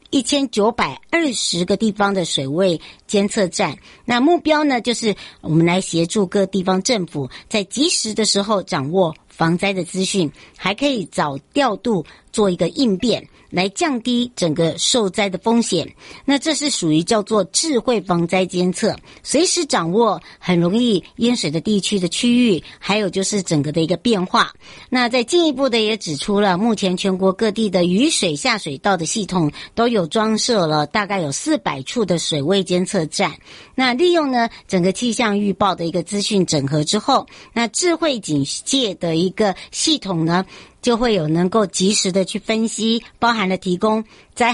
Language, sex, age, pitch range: Chinese, male, 60-79, 180-230 Hz